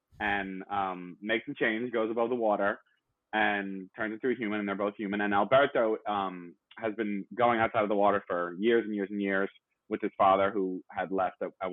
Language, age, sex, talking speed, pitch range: English, 20-39, male, 215 wpm, 100-120 Hz